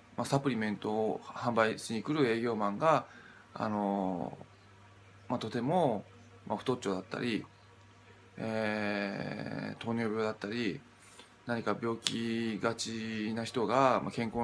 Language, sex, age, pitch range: Japanese, male, 20-39, 100-125 Hz